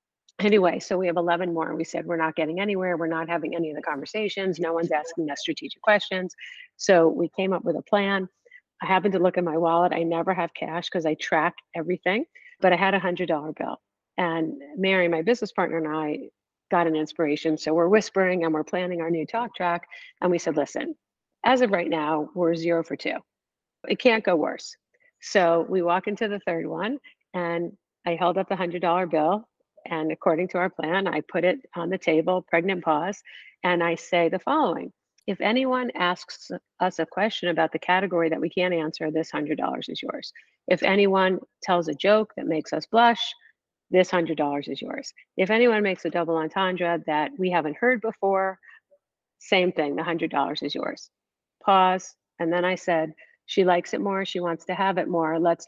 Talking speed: 200 wpm